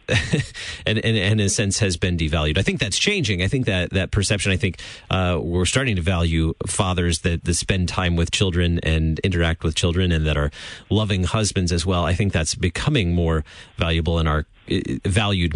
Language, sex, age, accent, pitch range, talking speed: English, male, 30-49, American, 90-120 Hz, 200 wpm